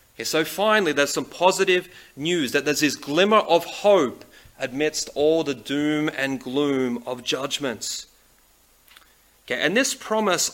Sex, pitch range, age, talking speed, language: male, 125-175 Hz, 30-49, 140 wpm, English